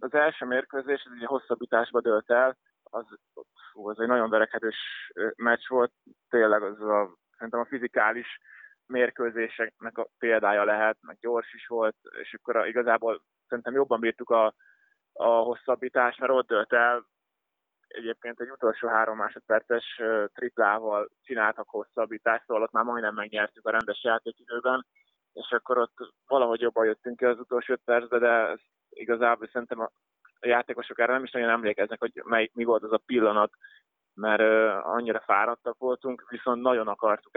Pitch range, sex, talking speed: 110-125 Hz, male, 155 wpm